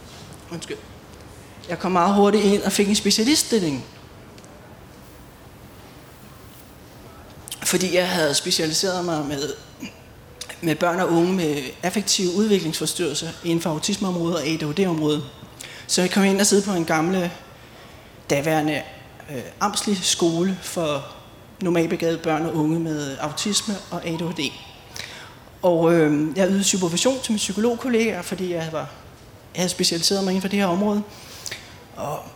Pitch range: 160-205 Hz